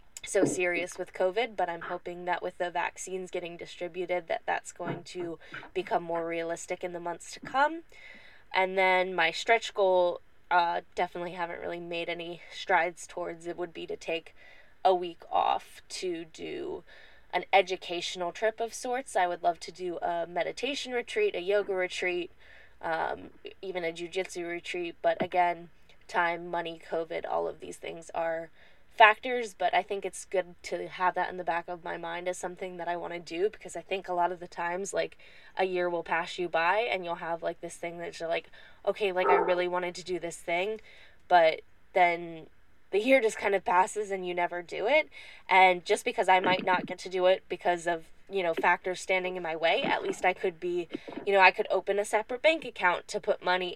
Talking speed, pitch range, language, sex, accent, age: 205 wpm, 175-195 Hz, English, female, American, 20-39